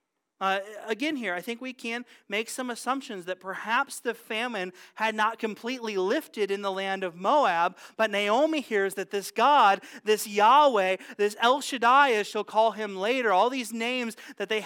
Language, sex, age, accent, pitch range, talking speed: English, male, 30-49, American, 180-235 Hz, 180 wpm